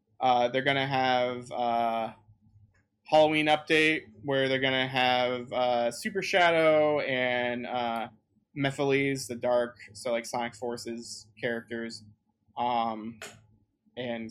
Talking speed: 115 wpm